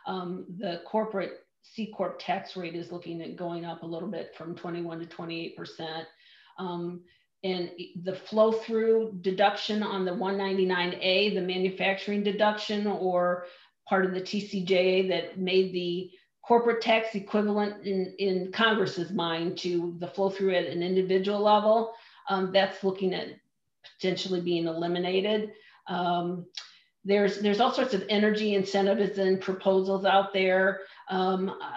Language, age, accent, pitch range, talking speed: English, 50-69, American, 180-210 Hz, 135 wpm